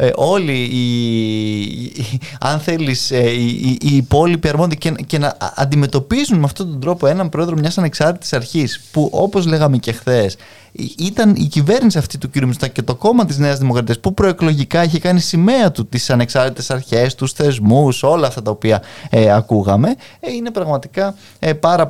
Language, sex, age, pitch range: Greek, male, 20-39, 115-160 Hz